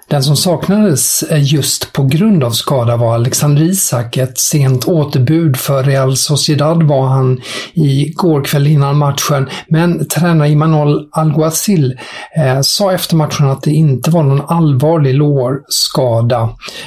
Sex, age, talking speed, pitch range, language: male, 50-69, 130 wpm, 130-170 Hz, English